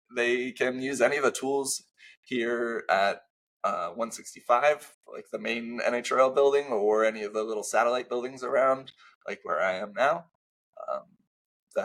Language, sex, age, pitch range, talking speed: English, male, 20-39, 115-140 Hz, 155 wpm